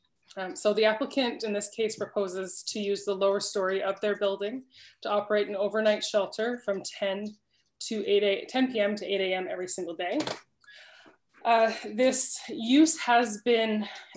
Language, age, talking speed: English, 20-39, 155 wpm